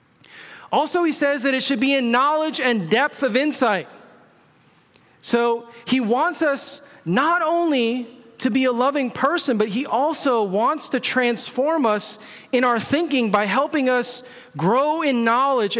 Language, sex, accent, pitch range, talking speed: English, male, American, 195-260 Hz, 150 wpm